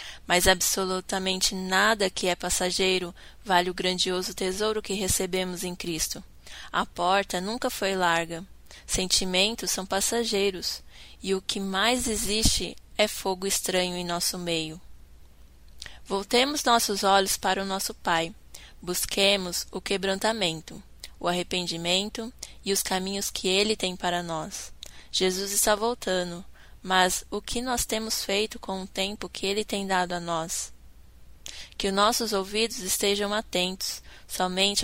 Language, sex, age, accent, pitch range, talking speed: Portuguese, female, 10-29, Brazilian, 175-200 Hz, 135 wpm